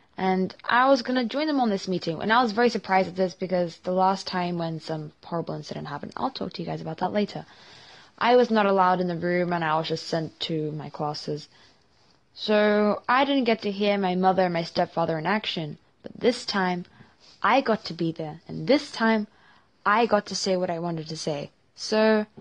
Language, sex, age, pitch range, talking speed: English, female, 10-29, 175-220 Hz, 220 wpm